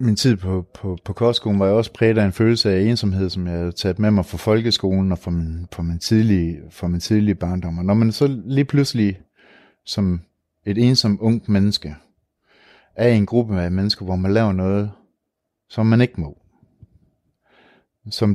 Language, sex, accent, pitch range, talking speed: Danish, male, native, 90-115 Hz, 185 wpm